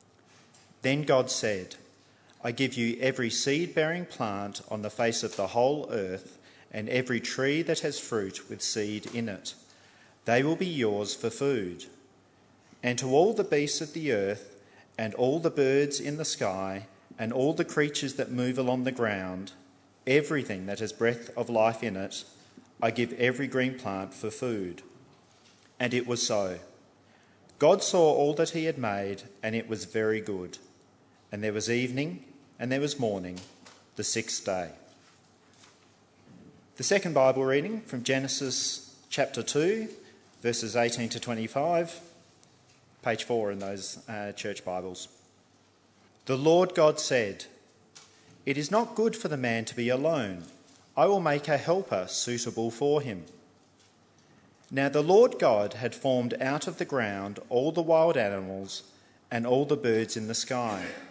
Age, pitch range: 40-59, 105-140 Hz